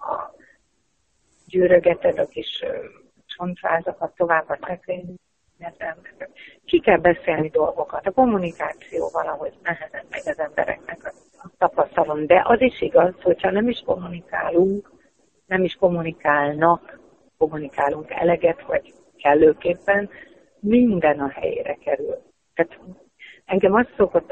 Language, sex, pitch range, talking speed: Hungarian, female, 170-265 Hz, 110 wpm